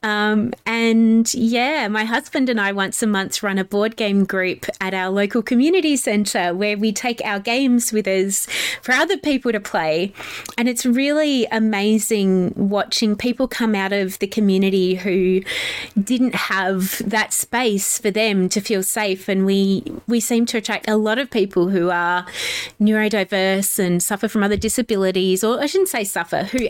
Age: 30-49